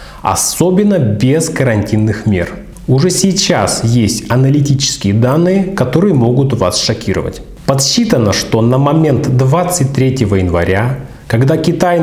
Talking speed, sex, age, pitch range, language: 105 wpm, male, 30-49, 115-155 Hz, Russian